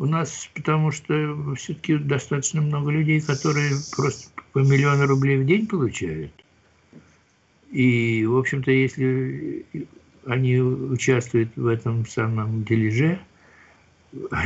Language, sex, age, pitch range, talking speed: Russian, male, 60-79, 95-140 Hz, 110 wpm